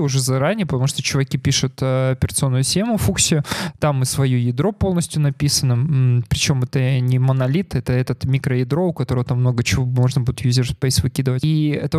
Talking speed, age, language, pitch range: 170 wpm, 20-39, Russian, 130-150 Hz